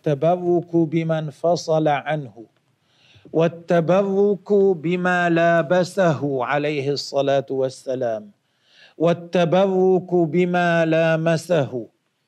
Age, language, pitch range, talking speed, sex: 40-59, Arabic, 145-180 Hz, 65 wpm, male